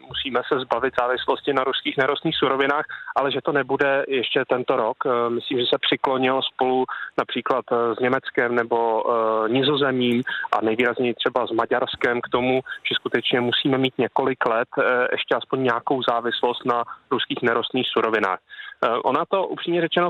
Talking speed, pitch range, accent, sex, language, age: 150 wpm, 120-145 Hz, native, male, Czech, 30-49